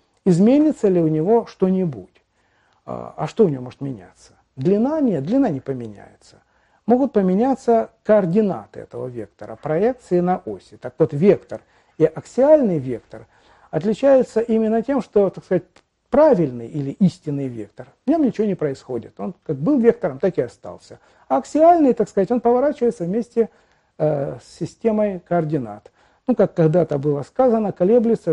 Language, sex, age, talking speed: Russian, male, 50-69, 145 wpm